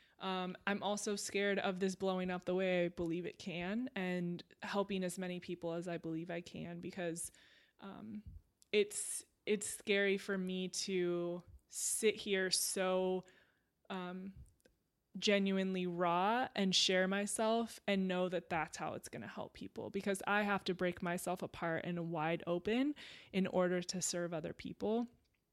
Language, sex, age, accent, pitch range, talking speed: English, female, 20-39, American, 175-195 Hz, 160 wpm